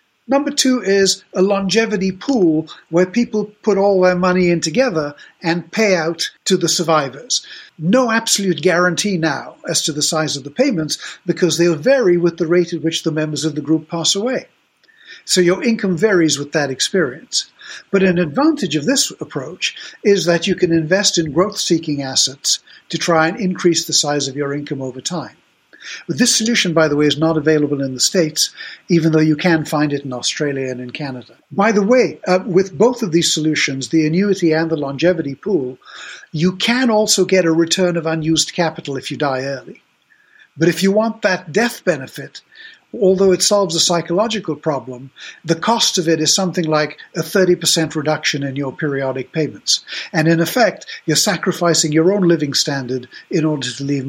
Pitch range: 155-190 Hz